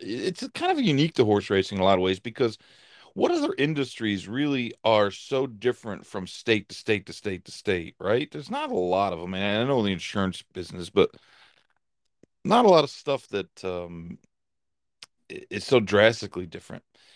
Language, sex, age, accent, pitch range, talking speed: English, male, 40-59, American, 100-135 Hz, 190 wpm